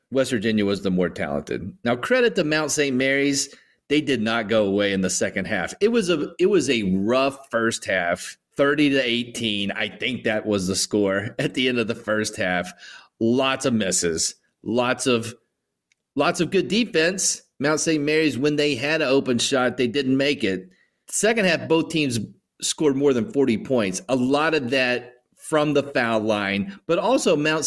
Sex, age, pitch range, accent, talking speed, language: male, 30-49, 115-170 Hz, American, 190 wpm, English